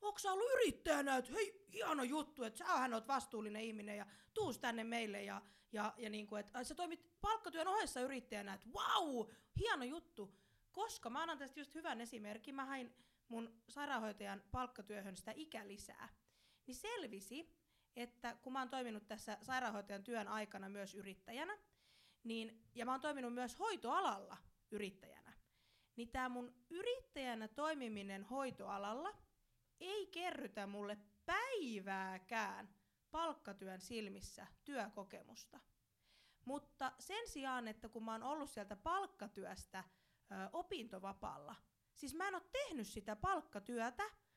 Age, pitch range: 20-39, 210-305 Hz